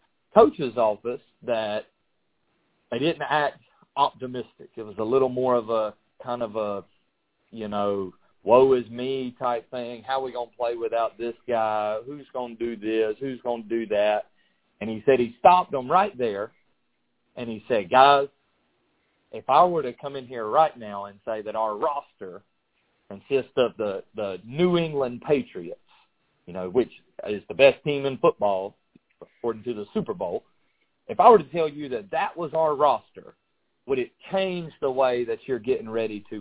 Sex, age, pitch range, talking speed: male, 40-59, 115-150 Hz, 180 wpm